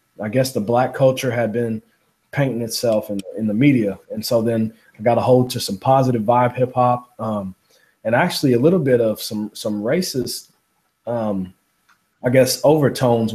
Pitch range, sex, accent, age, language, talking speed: 115-135 Hz, male, American, 20-39, English, 175 wpm